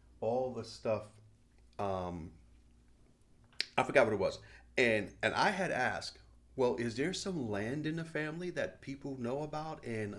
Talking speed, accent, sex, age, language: 160 wpm, American, male, 40-59, English